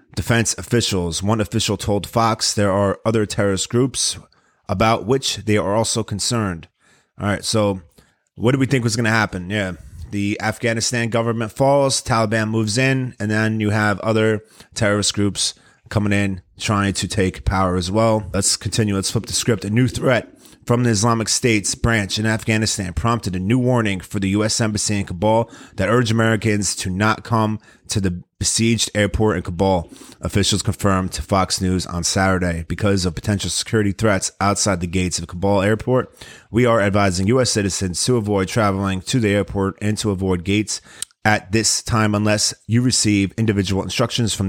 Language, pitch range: English, 95-115 Hz